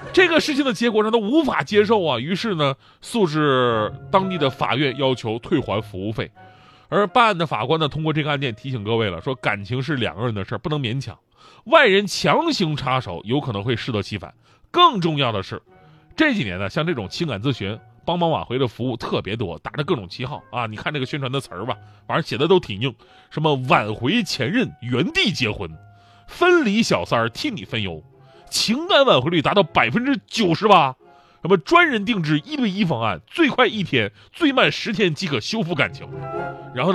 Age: 30-49